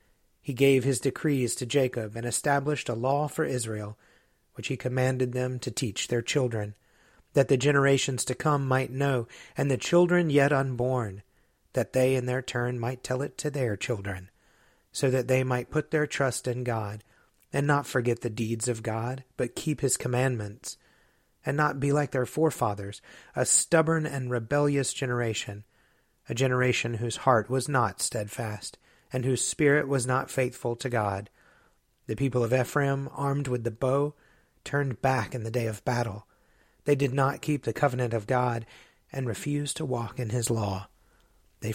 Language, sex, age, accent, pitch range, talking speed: English, male, 30-49, American, 115-140 Hz, 170 wpm